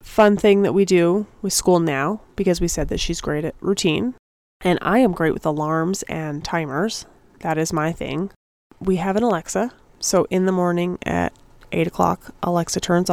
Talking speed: 185 wpm